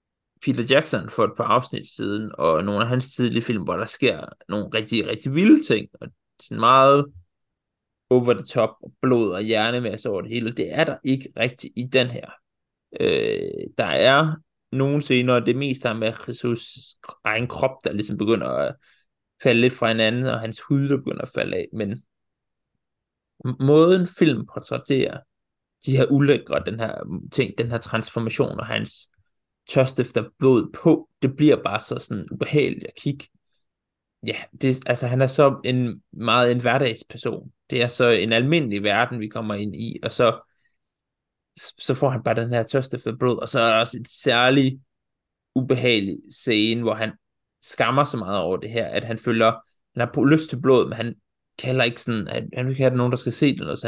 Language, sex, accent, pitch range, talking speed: Danish, male, native, 115-135 Hz, 190 wpm